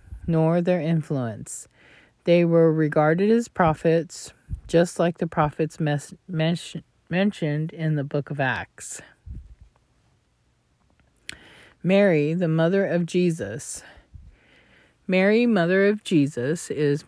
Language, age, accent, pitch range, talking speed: English, 40-59, American, 140-170 Hz, 100 wpm